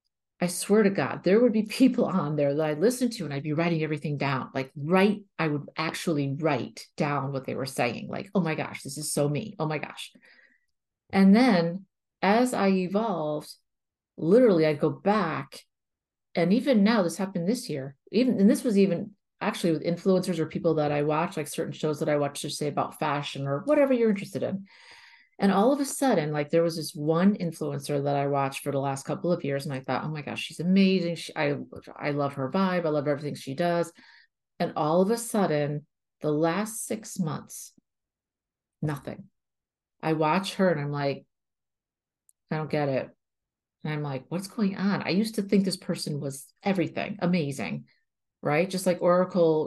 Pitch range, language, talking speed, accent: 145-195 Hz, English, 200 wpm, American